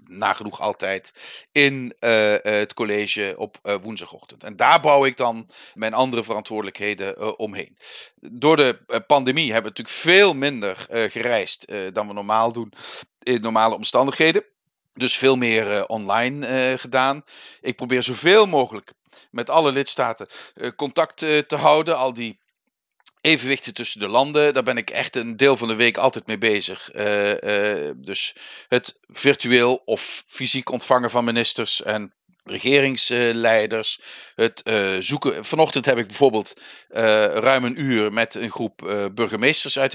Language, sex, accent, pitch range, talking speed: Dutch, male, Dutch, 105-135 Hz, 145 wpm